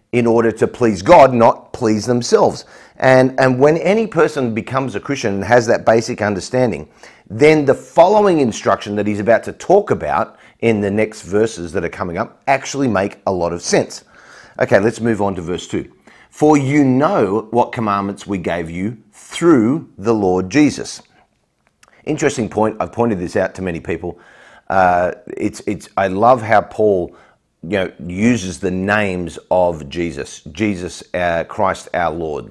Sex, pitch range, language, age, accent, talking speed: male, 95-125 Hz, English, 40-59, Australian, 170 wpm